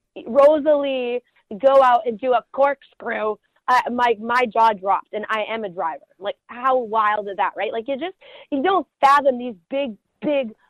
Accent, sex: American, female